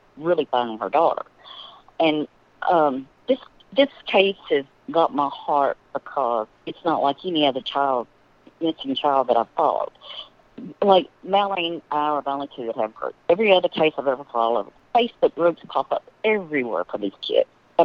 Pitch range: 145-210 Hz